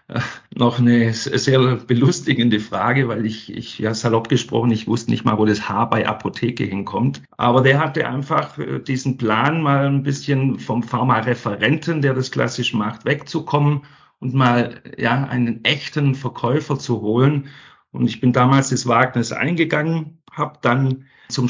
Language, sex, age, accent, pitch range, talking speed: German, male, 50-69, German, 115-135 Hz, 155 wpm